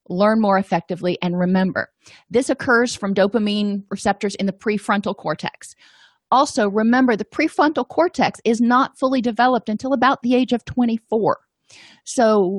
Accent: American